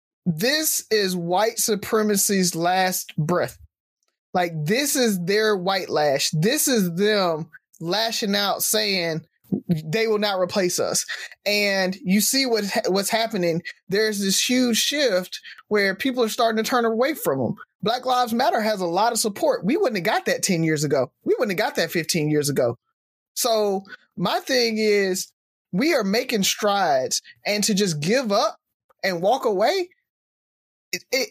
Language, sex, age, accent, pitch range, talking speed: English, male, 20-39, American, 195-245 Hz, 155 wpm